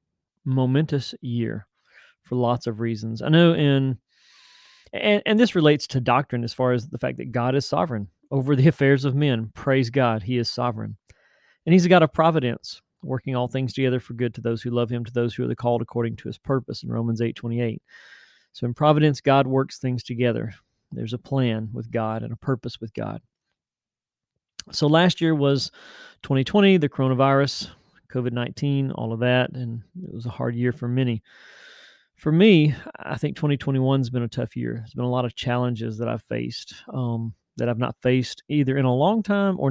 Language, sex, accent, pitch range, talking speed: English, male, American, 120-150 Hz, 200 wpm